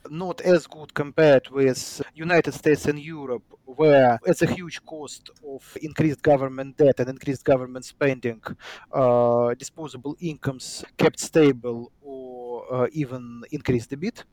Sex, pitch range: male, 135-175 Hz